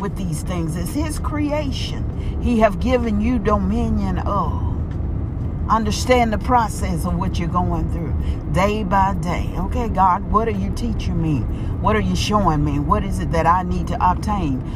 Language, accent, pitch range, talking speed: English, American, 80-95 Hz, 175 wpm